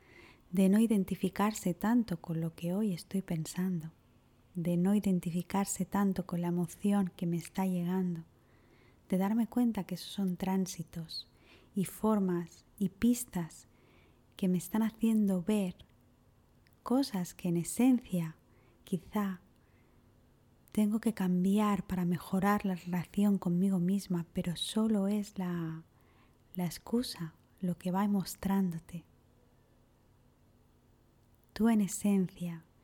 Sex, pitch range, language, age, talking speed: female, 165-195 Hz, Spanish, 20-39, 115 wpm